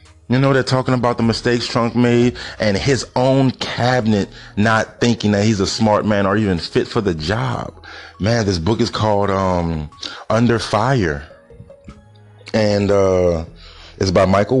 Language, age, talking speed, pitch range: English, 30-49, 160 wpm, 95-125 Hz